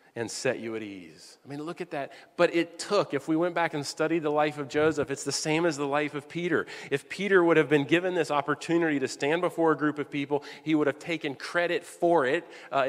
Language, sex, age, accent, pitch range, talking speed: English, male, 40-59, American, 135-165 Hz, 250 wpm